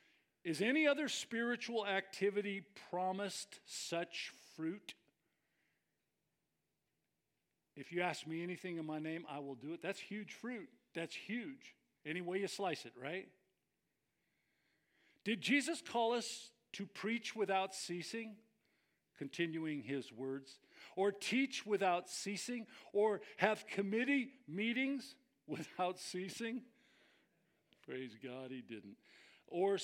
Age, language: 50-69, English